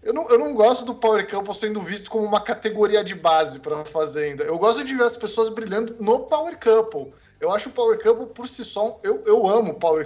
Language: Portuguese